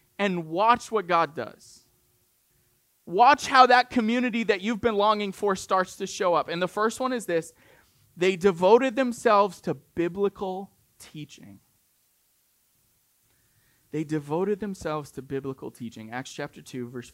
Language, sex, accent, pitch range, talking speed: English, male, American, 135-205 Hz, 140 wpm